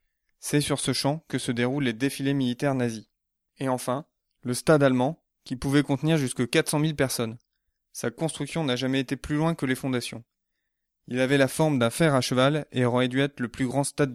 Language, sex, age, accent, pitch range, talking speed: French, male, 20-39, French, 125-145 Hz, 210 wpm